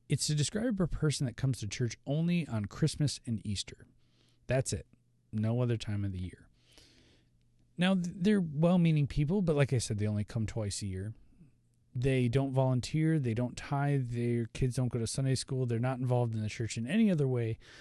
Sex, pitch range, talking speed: male, 110-145 Hz, 200 wpm